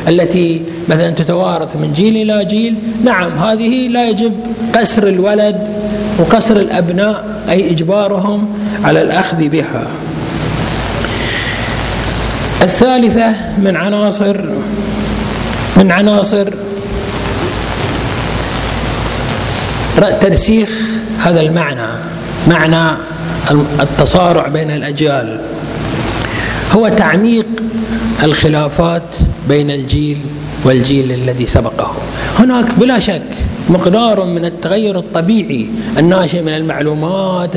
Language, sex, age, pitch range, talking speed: Arabic, male, 60-79, 155-220 Hz, 80 wpm